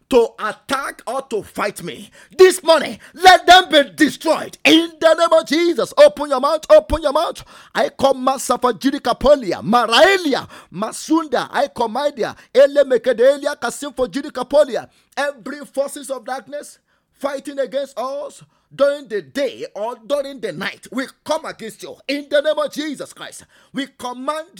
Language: English